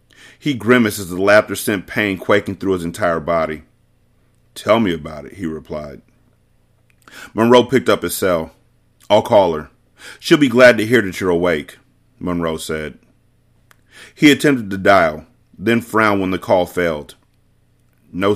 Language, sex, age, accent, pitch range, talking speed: English, male, 30-49, American, 90-115 Hz, 155 wpm